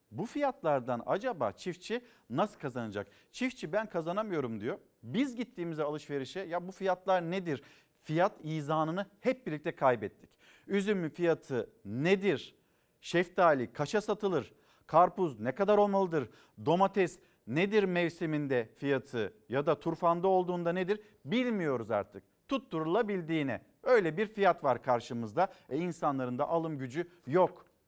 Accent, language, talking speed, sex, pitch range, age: native, Turkish, 120 wpm, male, 150-195 Hz, 50-69